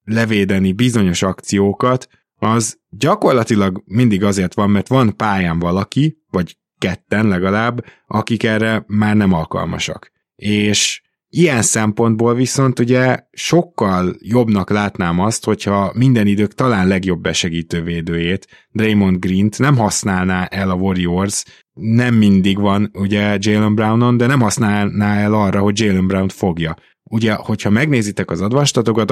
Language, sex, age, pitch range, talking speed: Hungarian, male, 20-39, 95-115 Hz, 130 wpm